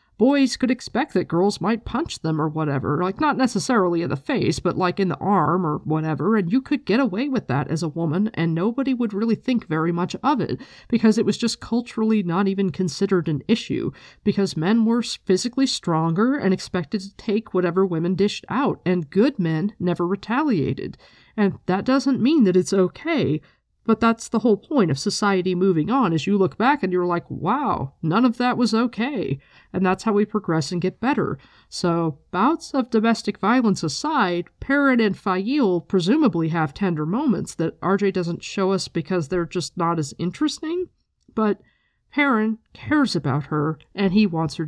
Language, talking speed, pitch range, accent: English, 190 wpm, 170-225 Hz, American